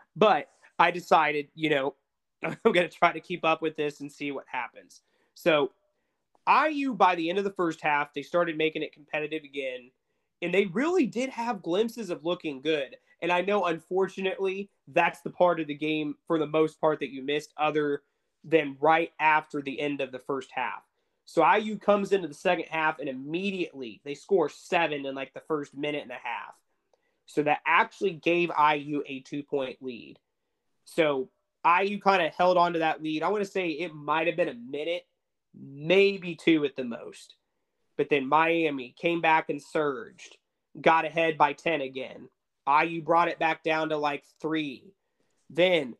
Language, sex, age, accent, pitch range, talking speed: English, male, 30-49, American, 150-185 Hz, 185 wpm